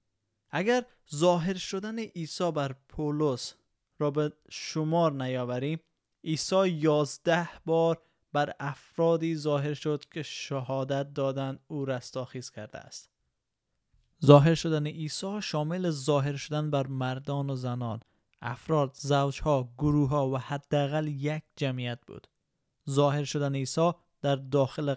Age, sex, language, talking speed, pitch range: 20-39, male, Persian, 115 wpm, 135-155 Hz